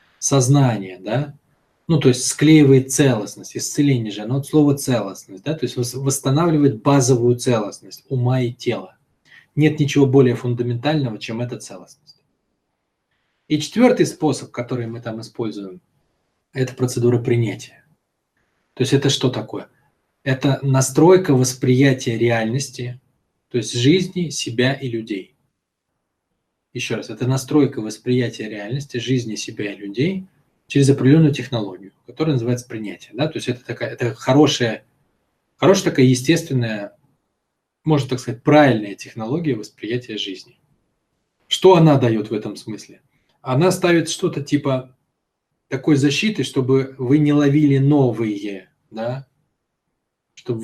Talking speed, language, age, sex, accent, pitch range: 120 wpm, Russian, 20-39, male, native, 120-145 Hz